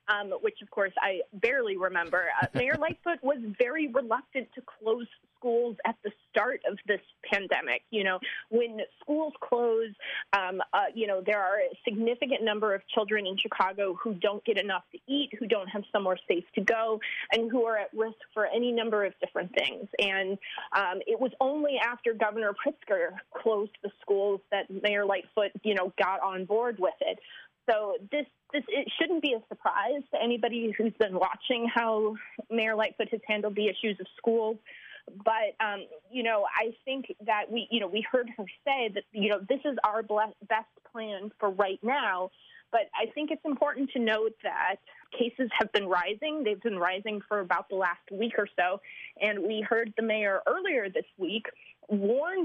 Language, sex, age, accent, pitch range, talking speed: English, female, 30-49, American, 205-255 Hz, 185 wpm